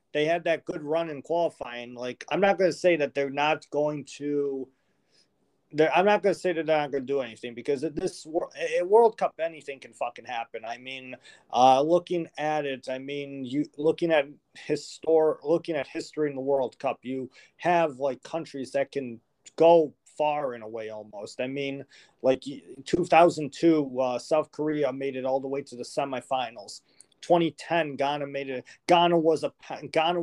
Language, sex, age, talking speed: English, male, 30-49, 190 wpm